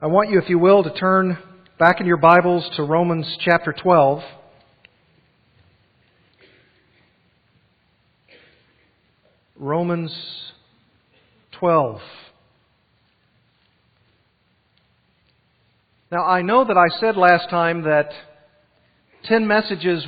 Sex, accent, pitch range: male, American, 160-190 Hz